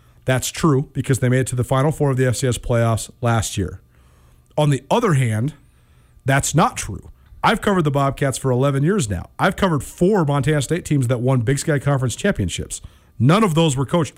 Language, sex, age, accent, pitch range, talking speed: English, male, 40-59, American, 120-165 Hz, 205 wpm